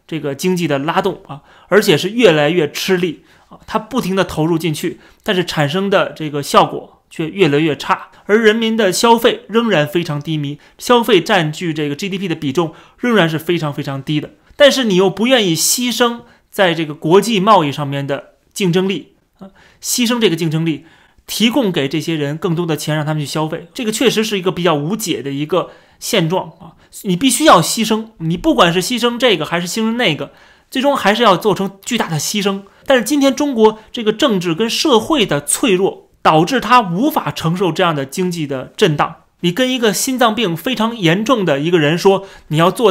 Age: 30-49